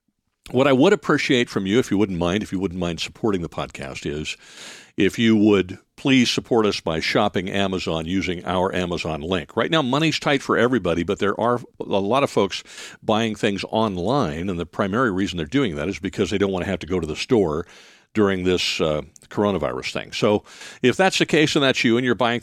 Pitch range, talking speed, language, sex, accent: 95-125 Hz, 220 wpm, English, male, American